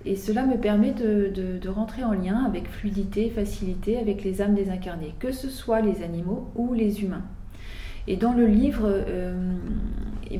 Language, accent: French, French